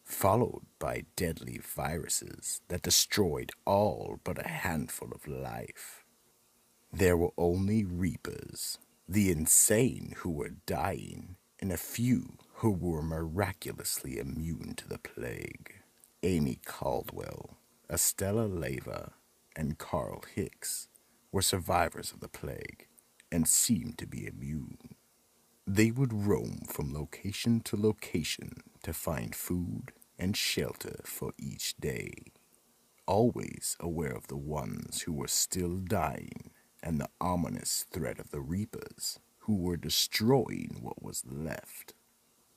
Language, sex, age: English, male, 50-69